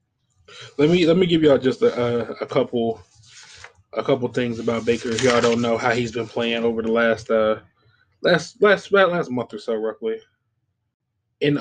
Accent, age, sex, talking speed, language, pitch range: American, 20-39, male, 180 wpm, English, 115-140 Hz